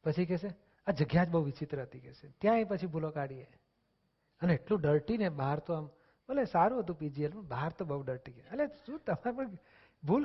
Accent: native